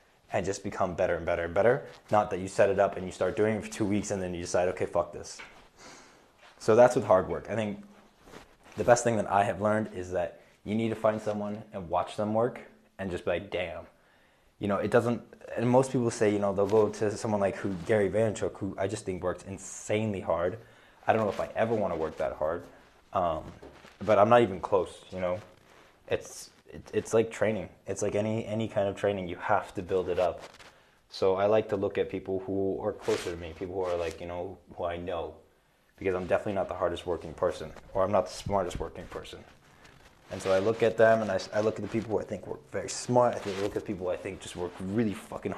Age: 20-39